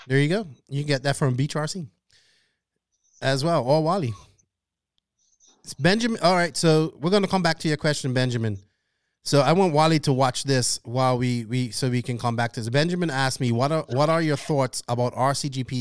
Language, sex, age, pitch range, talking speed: English, male, 30-49, 120-145 Hz, 215 wpm